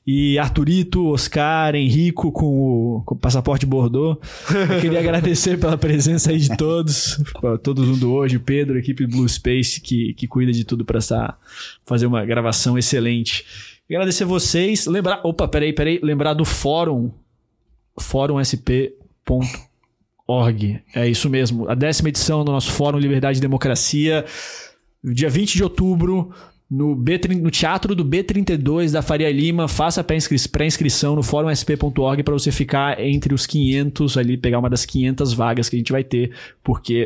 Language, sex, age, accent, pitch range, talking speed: Portuguese, male, 20-39, Brazilian, 125-155 Hz, 155 wpm